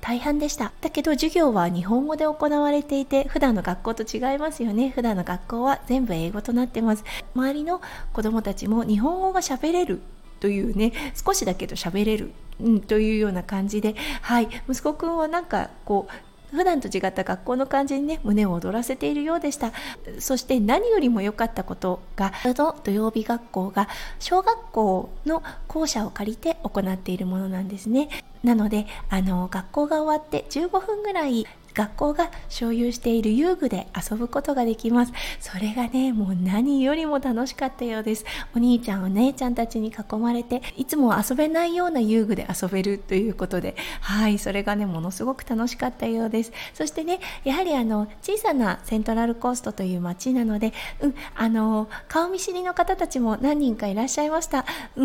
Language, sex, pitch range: Japanese, female, 210-295 Hz